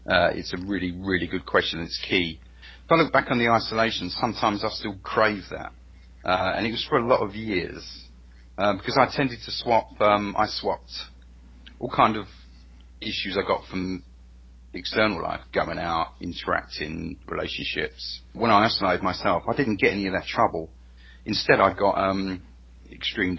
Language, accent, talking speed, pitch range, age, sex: English, British, 175 wpm, 65-110 Hz, 40-59, male